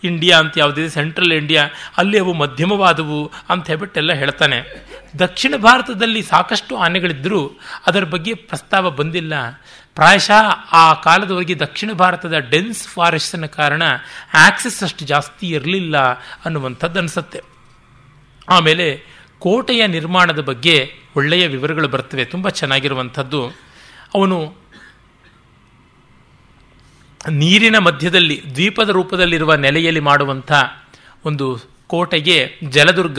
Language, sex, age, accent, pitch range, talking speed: Kannada, male, 30-49, native, 145-185 Hz, 100 wpm